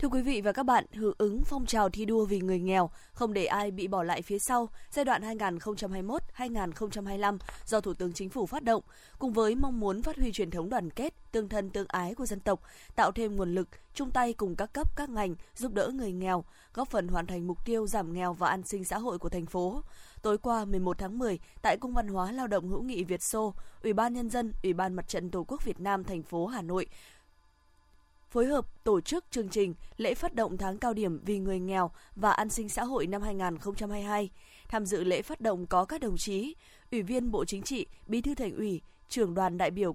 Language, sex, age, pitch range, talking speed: Vietnamese, female, 20-39, 185-235 Hz, 235 wpm